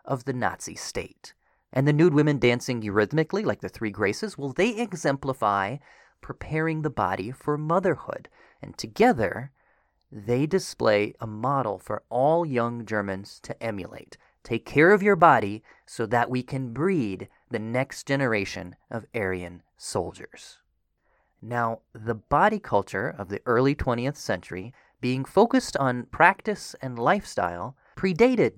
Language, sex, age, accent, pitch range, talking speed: English, male, 30-49, American, 110-150 Hz, 140 wpm